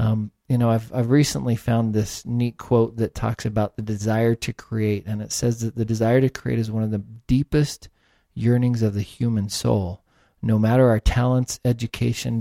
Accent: American